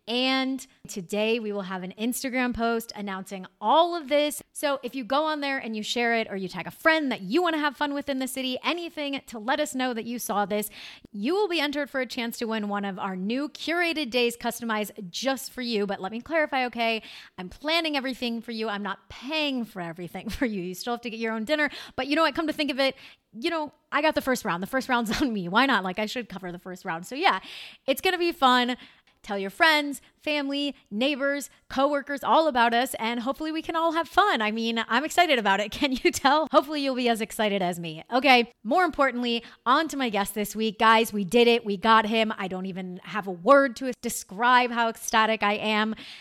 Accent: American